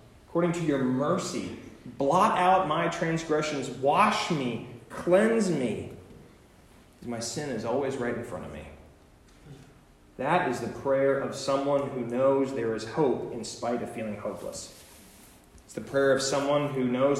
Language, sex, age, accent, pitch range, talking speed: English, male, 30-49, American, 115-165 Hz, 155 wpm